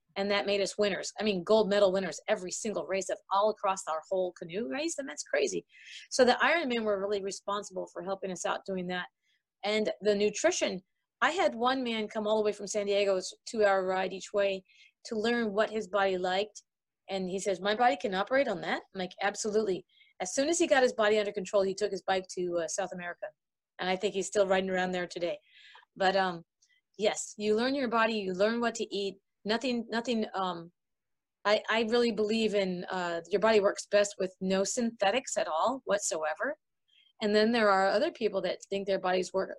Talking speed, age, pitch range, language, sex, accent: 210 wpm, 30-49, 190-220 Hz, English, female, American